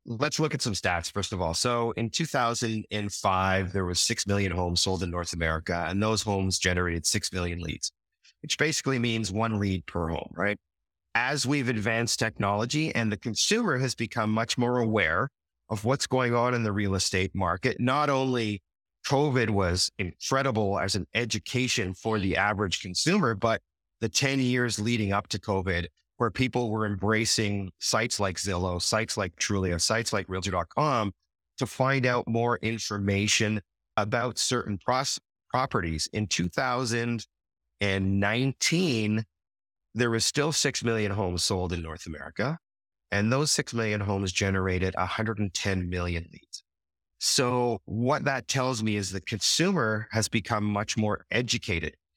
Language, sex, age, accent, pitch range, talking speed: English, male, 30-49, American, 95-120 Hz, 150 wpm